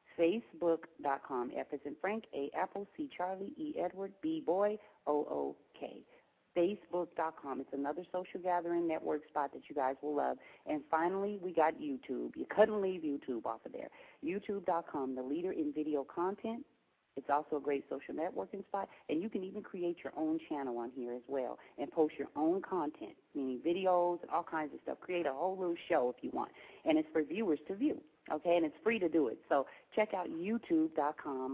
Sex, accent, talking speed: female, American, 195 wpm